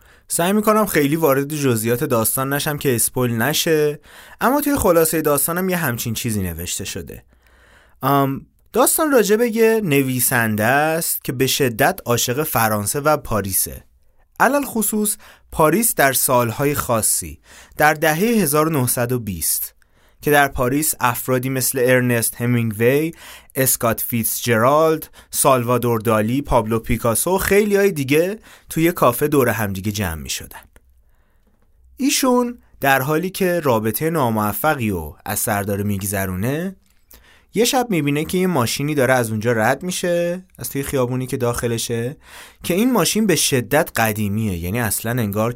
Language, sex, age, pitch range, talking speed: Persian, male, 30-49, 110-155 Hz, 130 wpm